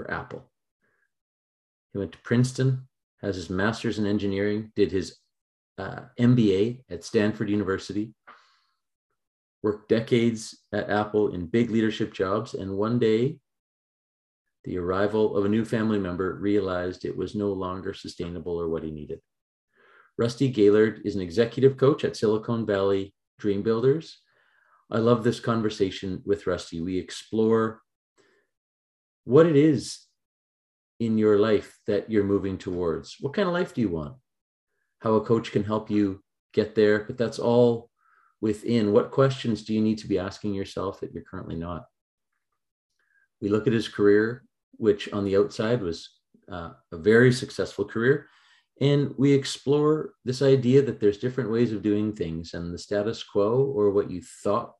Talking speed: 155 wpm